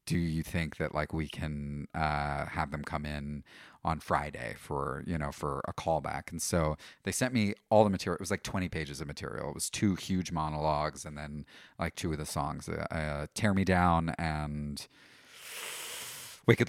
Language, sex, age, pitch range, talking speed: English, male, 30-49, 80-105 Hz, 190 wpm